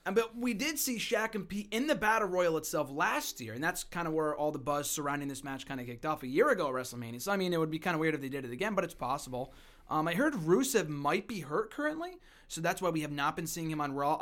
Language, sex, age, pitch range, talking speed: English, male, 20-39, 140-185 Hz, 295 wpm